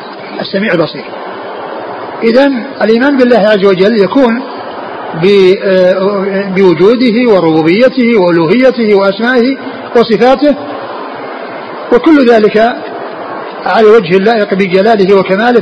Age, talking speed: 50-69, 75 wpm